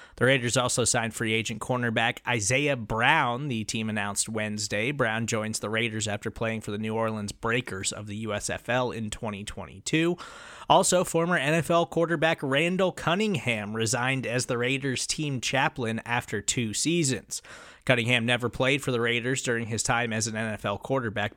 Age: 20-39